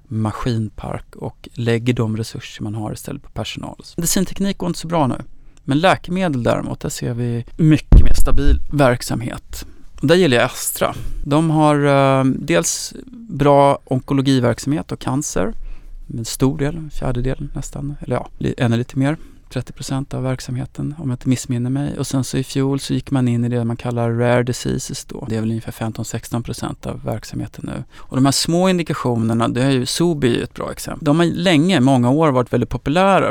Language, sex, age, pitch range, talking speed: Swedish, male, 30-49, 120-145 Hz, 185 wpm